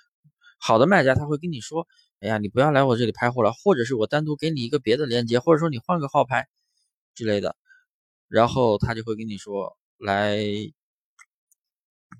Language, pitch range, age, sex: Chinese, 105-155 Hz, 20-39, male